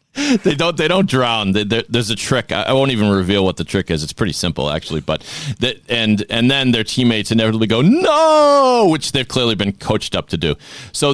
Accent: American